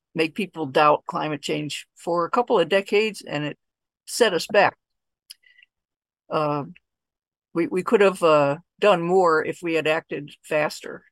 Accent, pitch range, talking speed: American, 155-200 Hz, 150 wpm